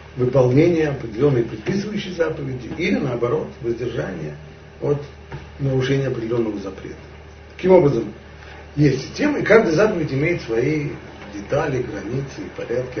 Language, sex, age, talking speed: Russian, male, 40-59, 105 wpm